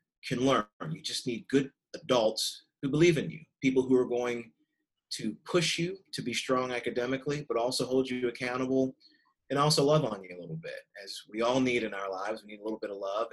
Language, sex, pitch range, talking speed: English, male, 110-140 Hz, 220 wpm